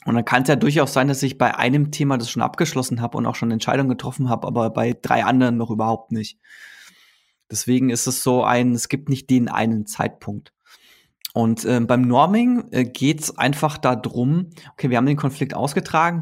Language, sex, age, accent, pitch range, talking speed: German, male, 20-39, German, 120-155 Hz, 205 wpm